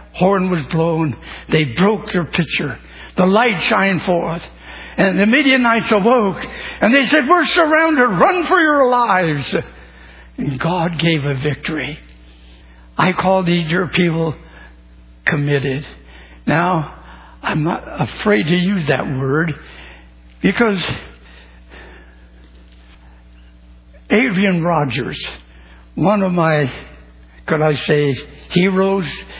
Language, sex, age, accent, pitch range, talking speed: English, male, 60-79, American, 120-195 Hz, 110 wpm